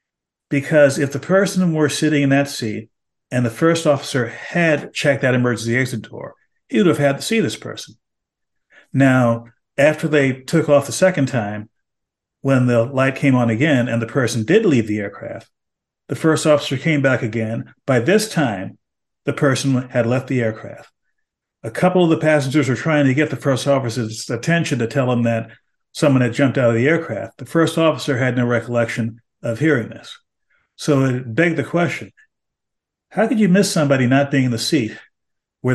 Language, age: English, 50-69